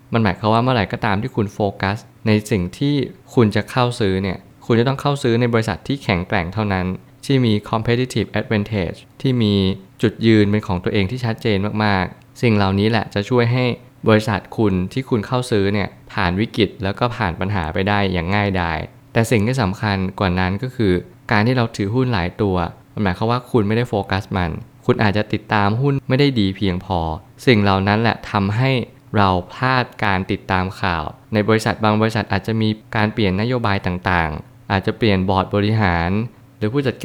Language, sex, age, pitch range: Thai, male, 20-39, 95-120 Hz